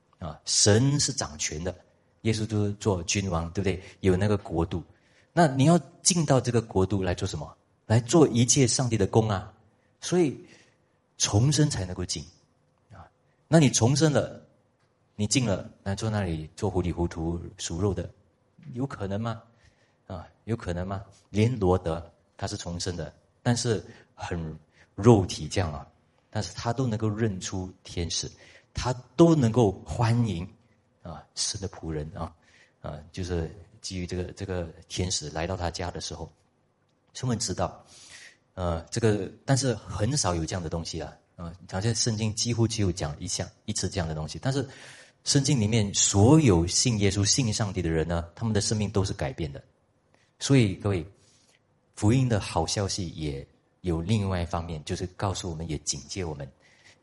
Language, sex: Chinese, male